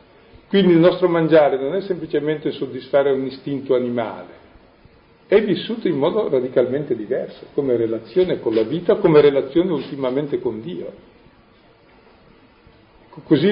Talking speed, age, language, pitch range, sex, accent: 125 wpm, 50-69, Italian, 130-195 Hz, male, native